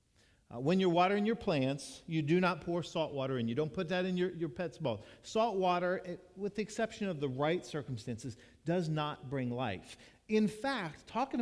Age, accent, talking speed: 50-69, American, 195 wpm